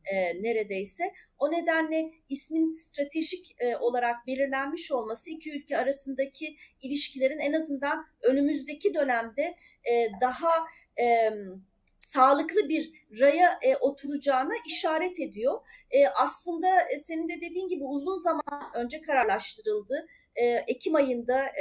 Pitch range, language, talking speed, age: 255-335 Hz, Turkish, 95 wpm, 40-59